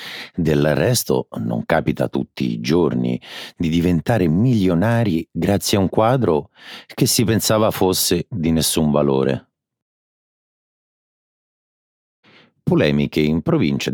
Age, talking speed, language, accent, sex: 50-69, 105 wpm, Italian, native, male